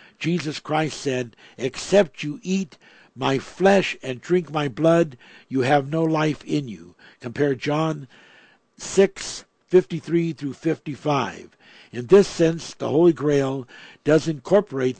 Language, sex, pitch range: English, male, 135-175 Hz